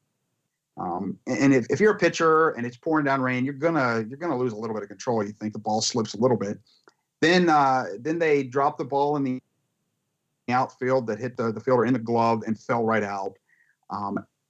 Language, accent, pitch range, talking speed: English, American, 115-140 Hz, 220 wpm